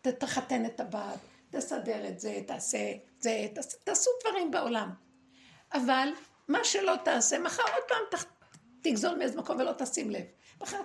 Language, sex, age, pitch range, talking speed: Hebrew, female, 60-79, 255-385 Hz, 160 wpm